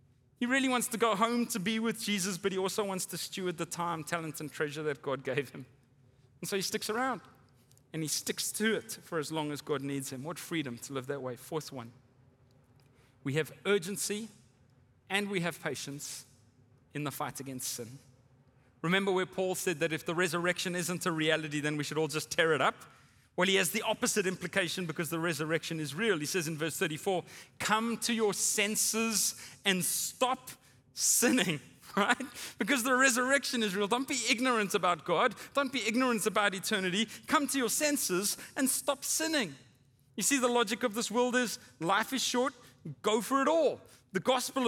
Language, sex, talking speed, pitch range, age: English, male, 195 wpm, 150-240 Hz, 30-49